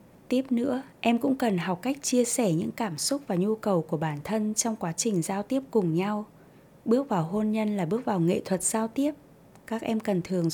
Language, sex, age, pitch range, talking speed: Vietnamese, female, 20-39, 175-230 Hz, 230 wpm